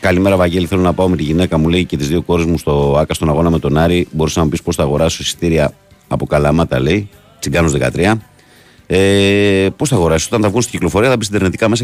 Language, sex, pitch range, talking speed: Greek, male, 80-90 Hz, 245 wpm